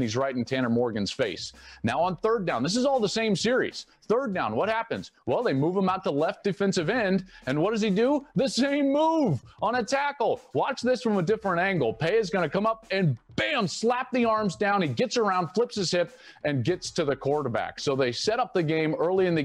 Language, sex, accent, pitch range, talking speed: English, male, American, 125-185 Hz, 240 wpm